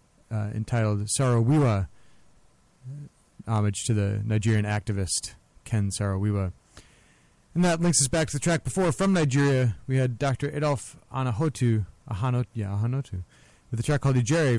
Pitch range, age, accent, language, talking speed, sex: 105-130 Hz, 30-49, American, English, 145 wpm, male